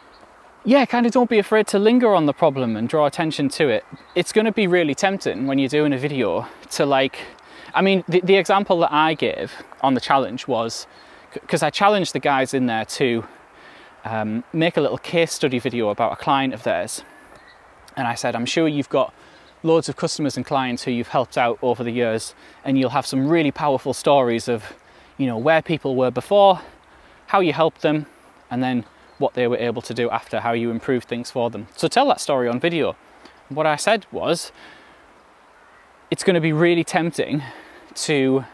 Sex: male